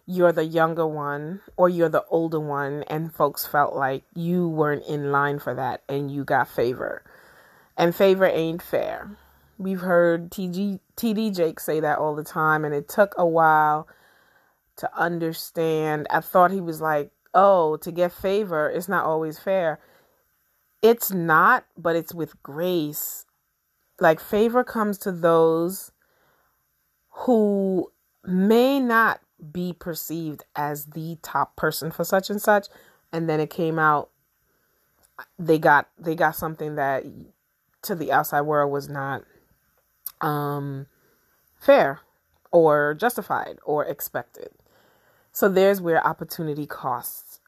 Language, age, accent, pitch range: English, 30-49, American, 150-190 Hz